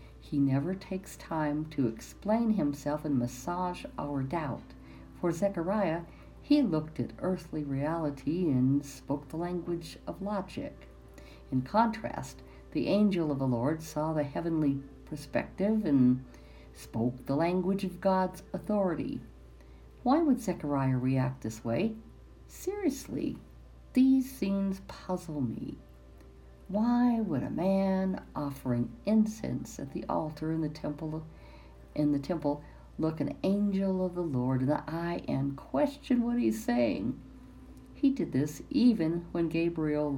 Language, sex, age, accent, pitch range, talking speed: English, female, 60-79, American, 130-190 Hz, 130 wpm